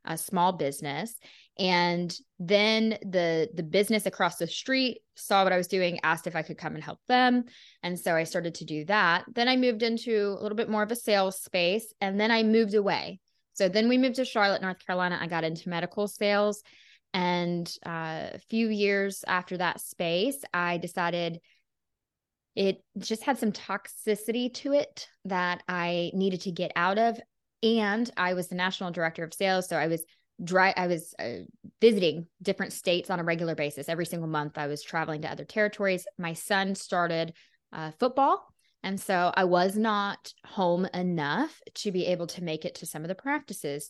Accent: American